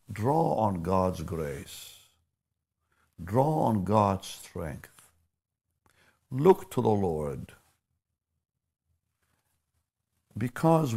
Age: 60-79